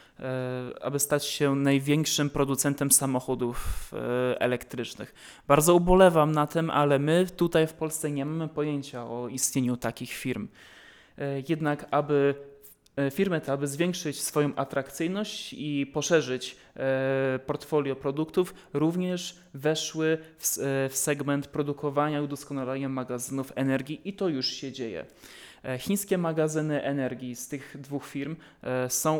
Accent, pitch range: native, 130-155 Hz